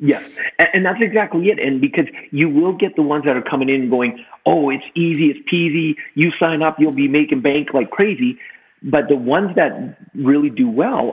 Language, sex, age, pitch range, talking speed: English, male, 40-59, 130-200 Hz, 205 wpm